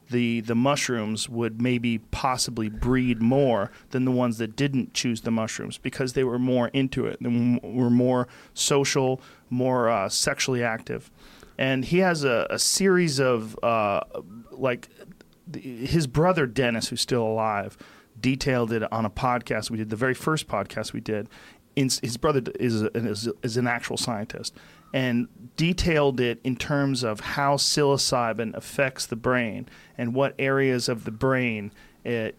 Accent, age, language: American, 40-59, English